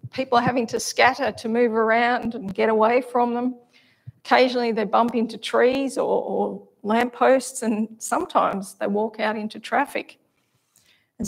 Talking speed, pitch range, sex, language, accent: 155 wpm, 215-245 Hz, female, English, Australian